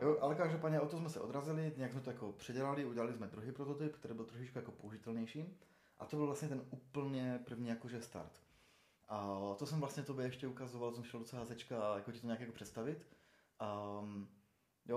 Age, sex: 20-39, male